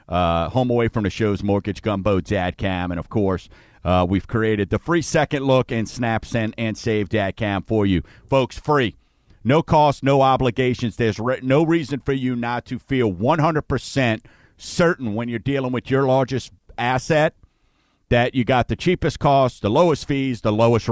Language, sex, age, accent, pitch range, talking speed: English, male, 50-69, American, 110-155 Hz, 180 wpm